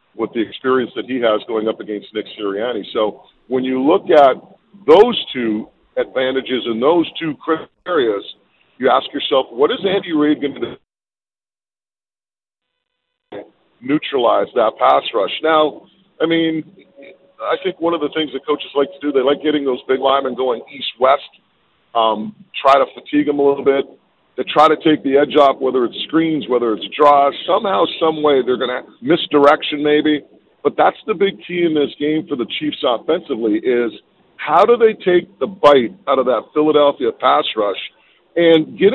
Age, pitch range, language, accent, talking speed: 50-69, 135-170 Hz, English, American, 180 wpm